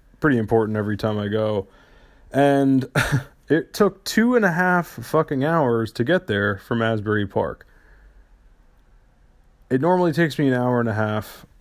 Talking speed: 155 wpm